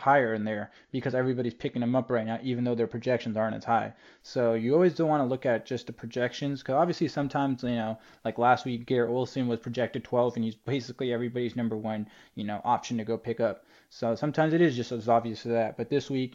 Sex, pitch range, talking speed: male, 115-135 Hz, 240 wpm